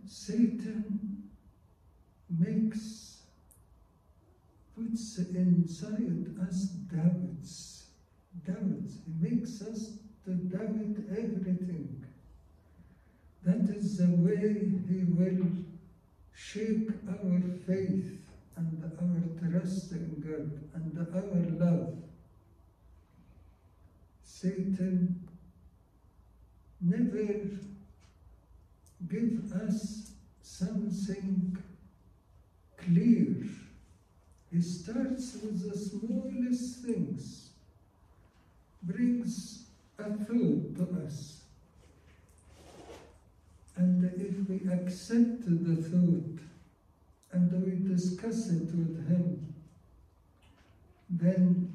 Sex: male